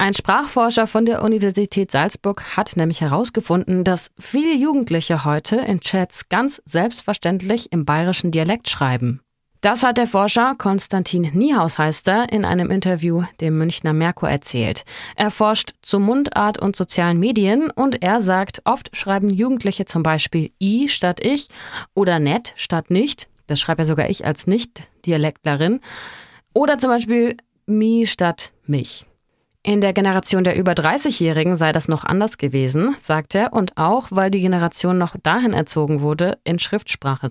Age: 30-49